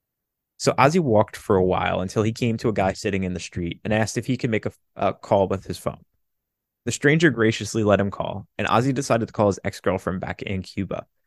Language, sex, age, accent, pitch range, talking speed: English, male, 20-39, American, 95-120 Hz, 235 wpm